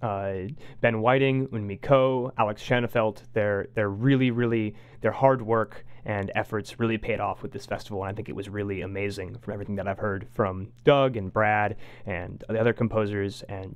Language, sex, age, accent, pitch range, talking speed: English, male, 20-39, American, 105-130 Hz, 185 wpm